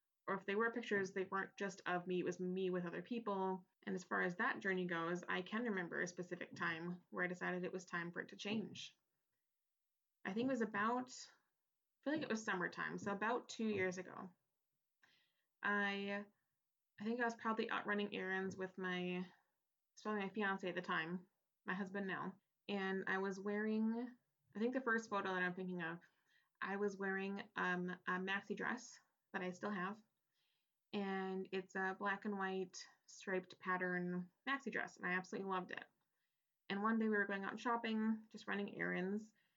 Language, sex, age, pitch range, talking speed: English, female, 20-39, 185-215 Hz, 190 wpm